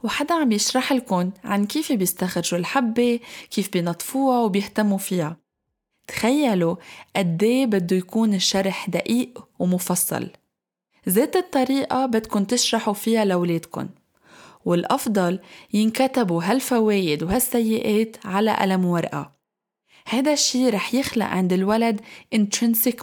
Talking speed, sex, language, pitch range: 95 wpm, female, Arabic, 190-245 Hz